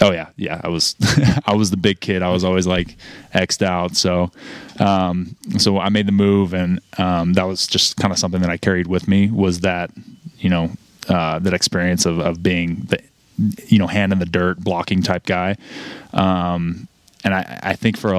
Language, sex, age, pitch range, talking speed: English, male, 20-39, 90-100 Hz, 210 wpm